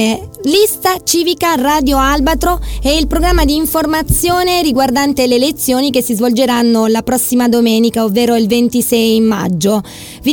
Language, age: Italian, 20-39